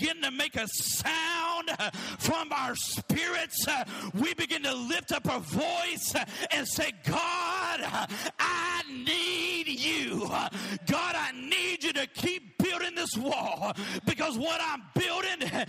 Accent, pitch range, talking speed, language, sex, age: American, 315-380 Hz, 125 wpm, English, male, 40-59